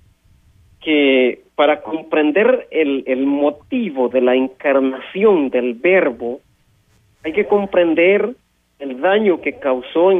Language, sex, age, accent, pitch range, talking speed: Spanish, male, 40-59, Mexican, 120-175 Hz, 110 wpm